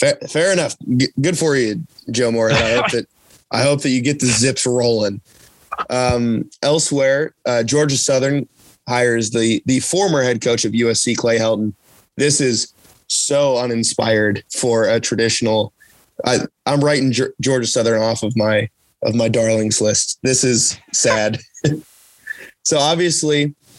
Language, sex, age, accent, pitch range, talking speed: English, male, 20-39, American, 115-140 Hz, 150 wpm